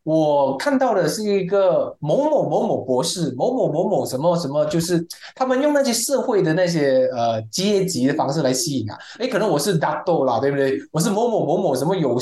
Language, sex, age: Chinese, male, 20-39